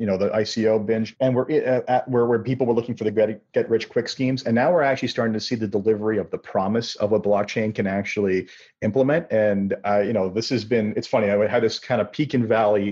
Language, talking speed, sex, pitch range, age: English, 250 wpm, male, 105-120 Hz, 40-59